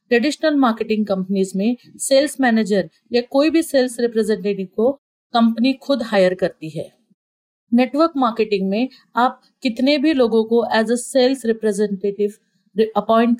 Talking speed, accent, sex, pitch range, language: 135 wpm, native, female, 205-250 Hz, Hindi